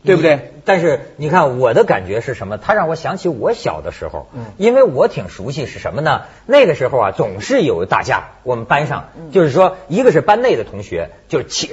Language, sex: Chinese, male